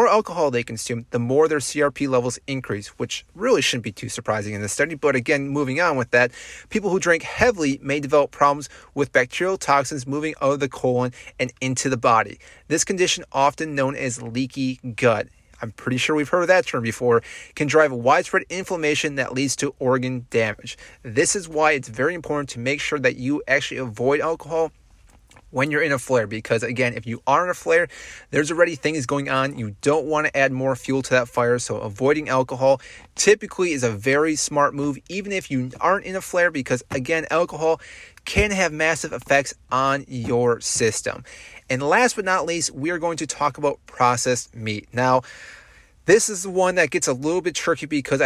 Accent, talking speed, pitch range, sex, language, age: American, 200 wpm, 125-160 Hz, male, English, 30-49